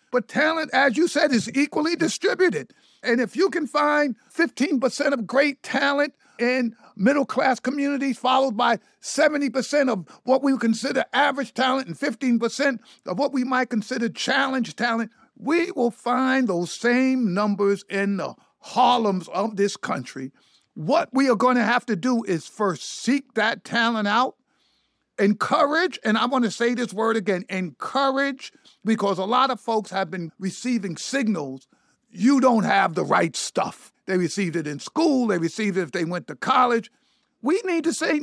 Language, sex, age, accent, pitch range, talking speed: English, male, 50-69, American, 200-270 Hz, 175 wpm